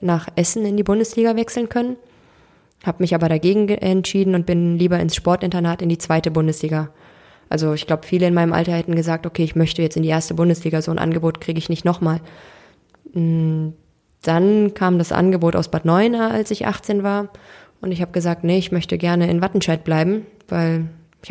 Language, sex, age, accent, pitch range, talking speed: German, female, 20-39, German, 165-200 Hz, 195 wpm